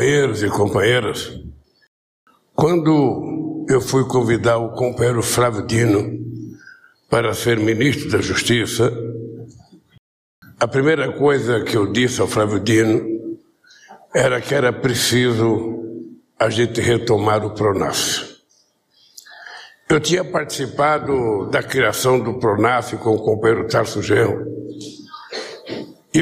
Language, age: Portuguese, 60-79